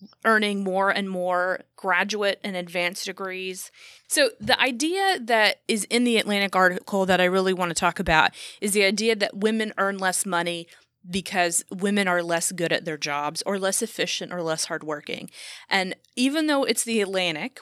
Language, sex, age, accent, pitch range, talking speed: English, female, 30-49, American, 180-230 Hz, 175 wpm